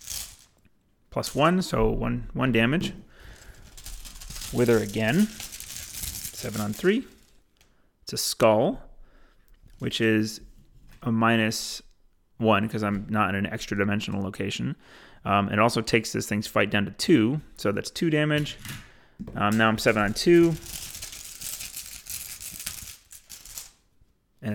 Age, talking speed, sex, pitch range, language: 30-49, 115 wpm, male, 110-130 Hz, English